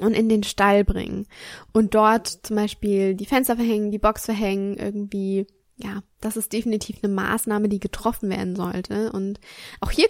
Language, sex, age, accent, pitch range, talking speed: German, female, 10-29, German, 195-225 Hz, 170 wpm